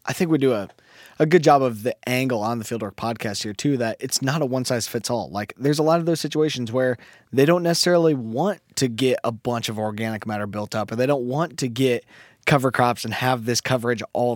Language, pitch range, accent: English, 115-145 Hz, American